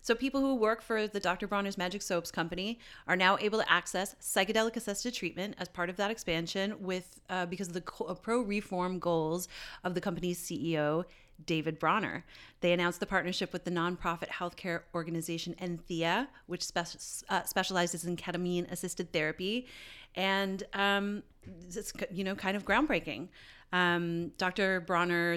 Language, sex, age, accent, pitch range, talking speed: English, female, 30-49, American, 165-195 Hz, 150 wpm